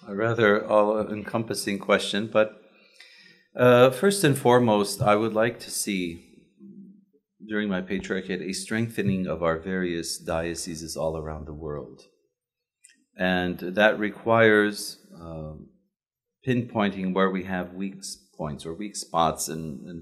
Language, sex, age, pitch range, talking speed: English, male, 40-59, 80-105 Hz, 125 wpm